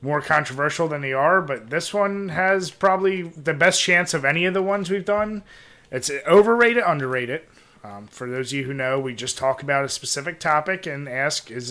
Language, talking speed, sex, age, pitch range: English, 205 wpm, male, 30-49, 135-175 Hz